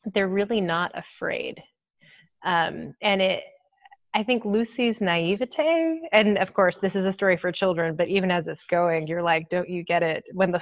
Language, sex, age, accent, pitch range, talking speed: English, female, 30-49, American, 170-200 Hz, 185 wpm